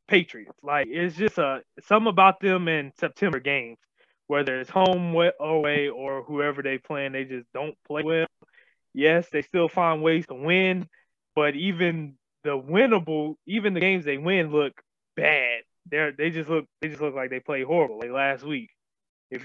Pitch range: 135-170 Hz